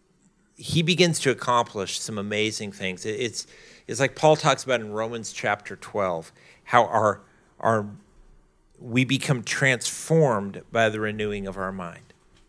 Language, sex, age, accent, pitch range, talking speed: English, male, 40-59, American, 135-190 Hz, 140 wpm